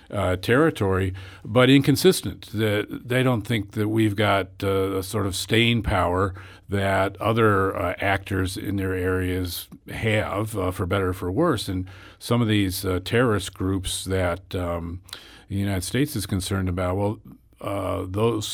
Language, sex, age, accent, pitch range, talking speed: English, male, 50-69, American, 95-110 Hz, 155 wpm